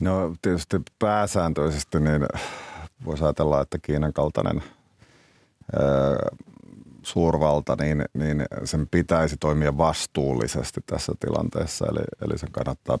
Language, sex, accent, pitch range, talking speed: Finnish, male, native, 70-80 Hz, 100 wpm